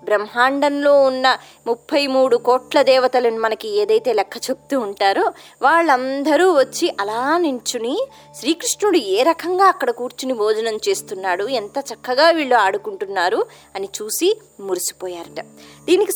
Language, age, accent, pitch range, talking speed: Telugu, 20-39, native, 230-360 Hz, 110 wpm